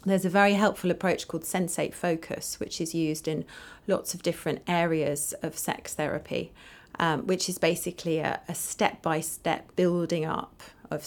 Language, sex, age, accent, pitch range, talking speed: English, female, 30-49, British, 155-190 Hz, 155 wpm